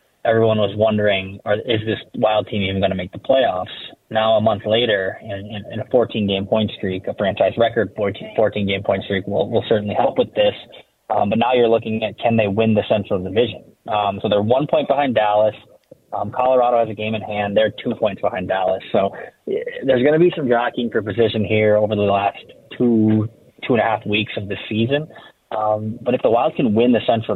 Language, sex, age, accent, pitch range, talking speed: English, male, 20-39, American, 100-115 Hz, 215 wpm